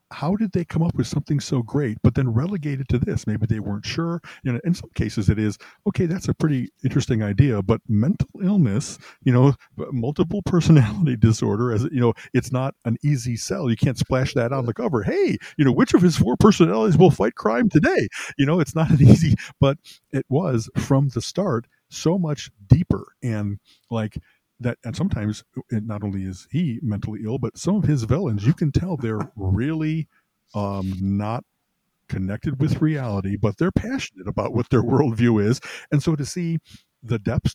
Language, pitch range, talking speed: English, 110-145 Hz, 195 wpm